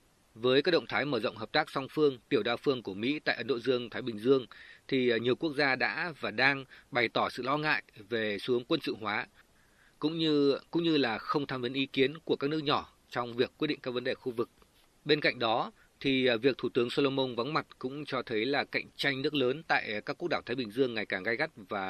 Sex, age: male, 20-39